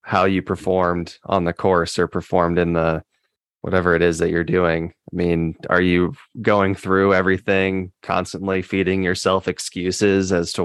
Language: English